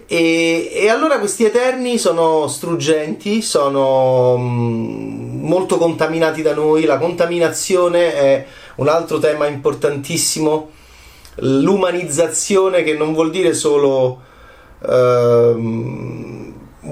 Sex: male